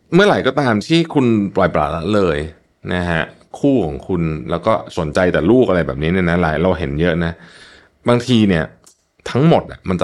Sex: male